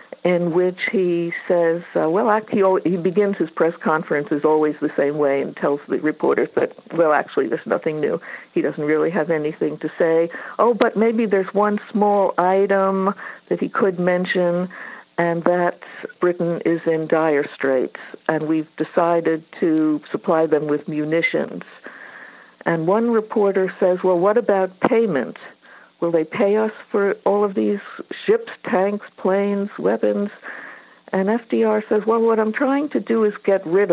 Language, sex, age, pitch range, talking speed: English, female, 60-79, 165-215 Hz, 165 wpm